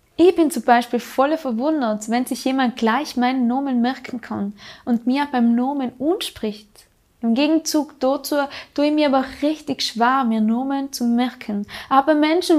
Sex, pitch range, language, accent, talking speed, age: female, 230-280 Hz, German, German, 160 wpm, 20-39